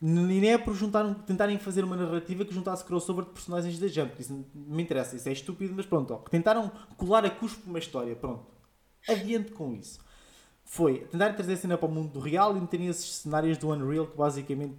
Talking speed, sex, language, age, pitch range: 210 wpm, male, Portuguese, 20-39, 145-195 Hz